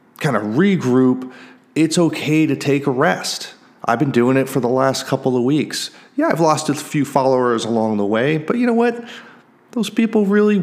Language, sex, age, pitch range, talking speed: English, male, 30-49, 115-160 Hz, 200 wpm